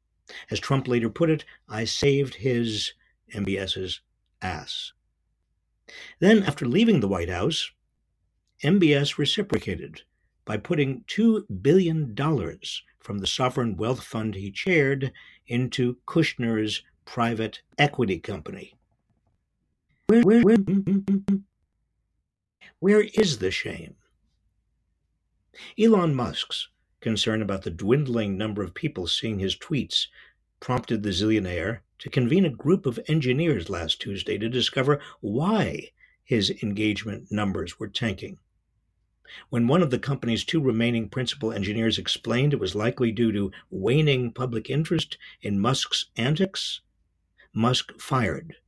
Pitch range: 100-145 Hz